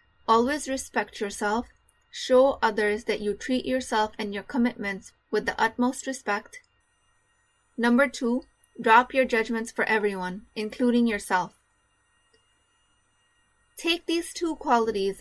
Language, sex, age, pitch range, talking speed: English, female, 20-39, 215-260 Hz, 115 wpm